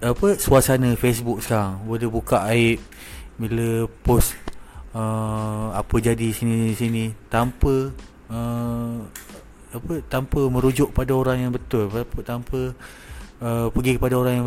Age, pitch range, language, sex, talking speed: 30-49, 110-140 Hz, English, male, 120 wpm